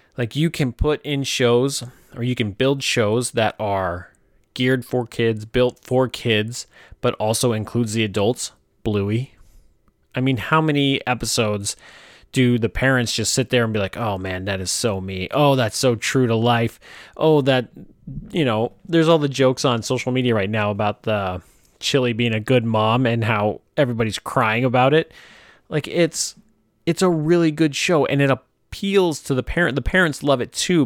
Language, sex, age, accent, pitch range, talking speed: English, male, 30-49, American, 110-140 Hz, 185 wpm